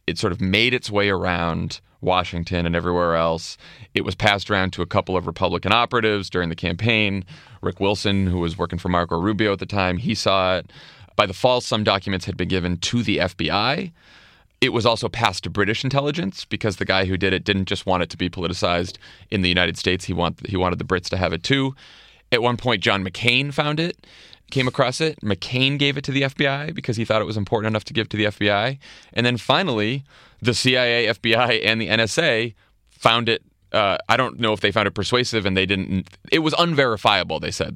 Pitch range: 90-120 Hz